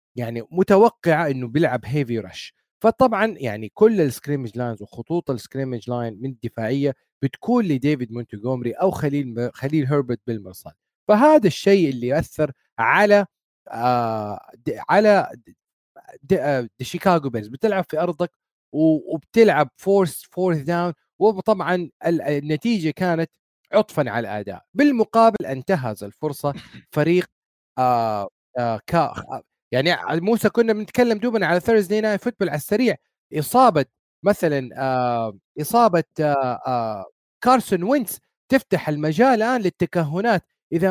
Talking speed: 115 wpm